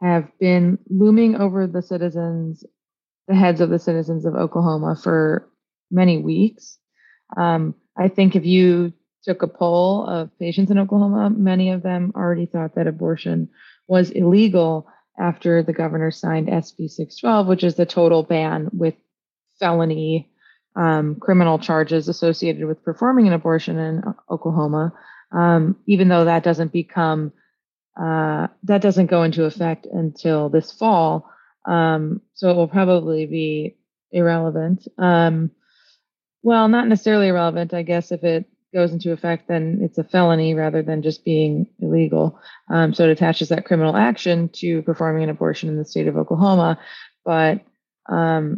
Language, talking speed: English, 150 wpm